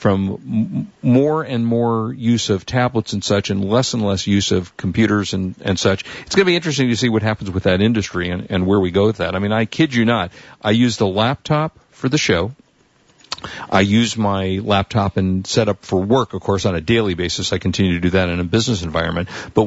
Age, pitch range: 50-69, 95-115 Hz